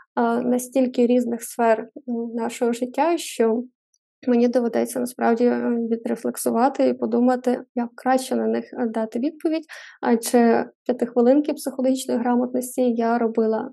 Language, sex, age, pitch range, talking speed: Ukrainian, female, 20-39, 230-260 Hz, 110 wpm